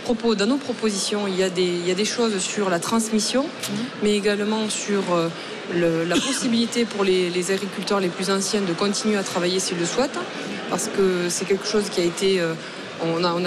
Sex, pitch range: female, 185-215 Hz